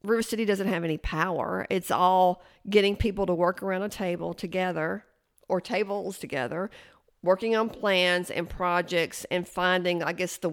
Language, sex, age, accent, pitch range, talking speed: English, female, 50-69, American, 175-205 Hz, 165 wpm